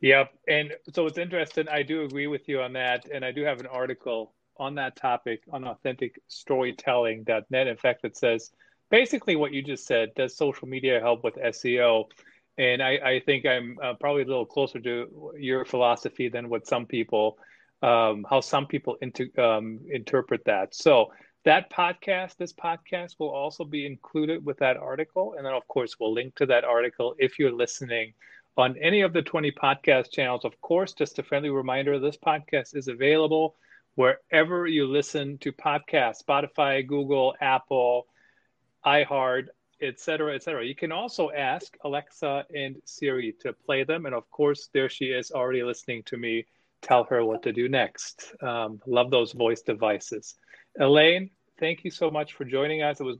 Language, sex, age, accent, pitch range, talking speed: English, male, 40-59, American, 125-150 Hz, 180 wpm